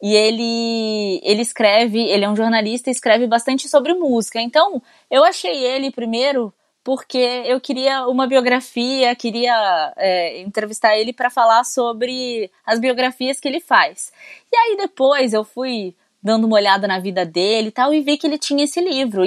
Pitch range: 200-270 Hz